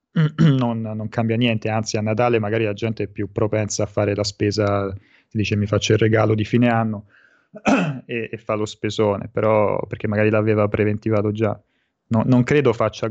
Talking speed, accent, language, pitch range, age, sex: 185 wpm, native, Italian, 105-120 Hz, 20-39, male